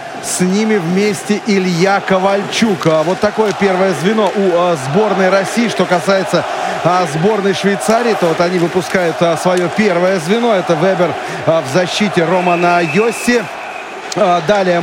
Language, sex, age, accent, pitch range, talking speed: Russian, male, 30-49, native, 175-215 Hz, 120 wpm